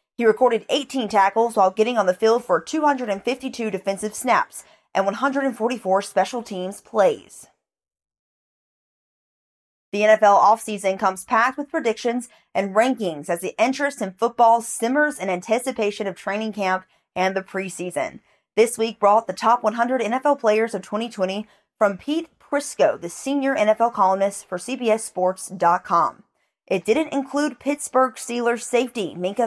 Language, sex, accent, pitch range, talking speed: English, female, American, 195-255 Hz, 135 wpm